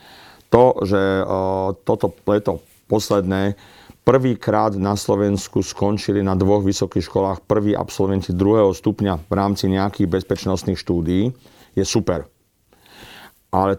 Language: Slovak